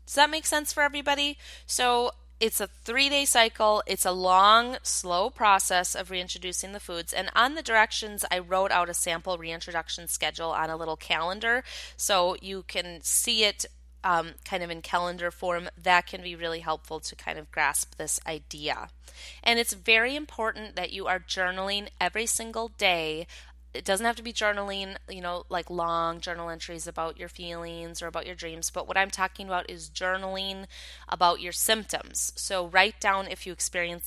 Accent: American